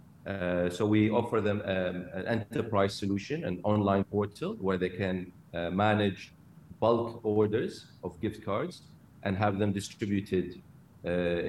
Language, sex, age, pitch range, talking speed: Arabic, male, 40-59, 90-105 Hz, 140 wpm